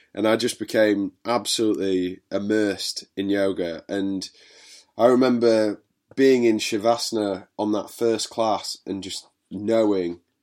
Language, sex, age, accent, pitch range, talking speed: English, male, 20-39, British, 95-120 Hz, 120 wpm